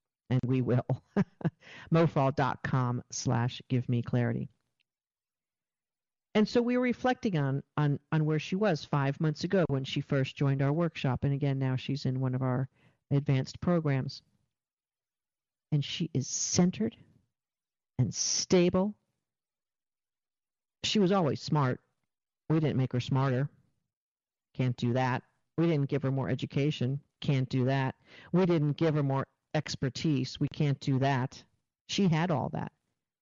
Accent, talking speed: American, 145 wpm